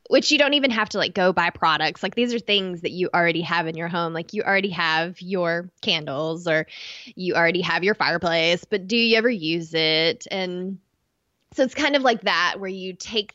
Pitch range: 170-205 Hz